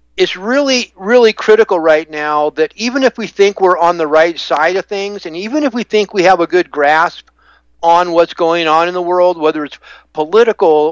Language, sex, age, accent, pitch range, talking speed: English, male, 50-69, American, 150-195 Hz, 210 wpm